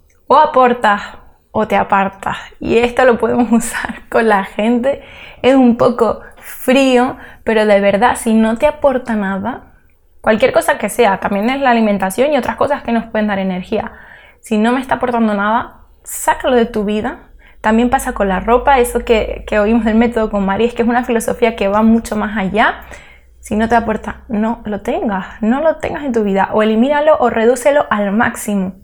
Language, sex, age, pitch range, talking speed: Spanish, female, 20-39, 210-250 Hz, 195 wpm